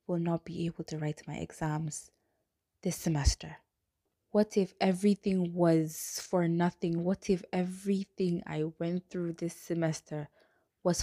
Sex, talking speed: female, 135 wpm